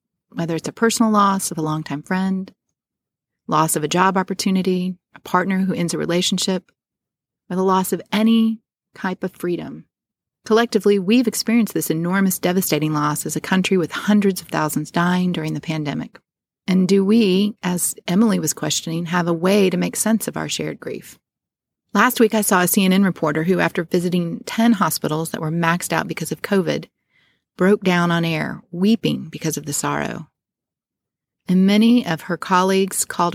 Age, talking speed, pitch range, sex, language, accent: 30-49, 175 wpm, 165-205 Hz, female, English, American